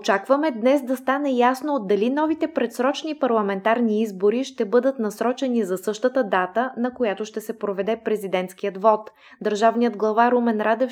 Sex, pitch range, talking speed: female, 200-245 Hz, 150 wpm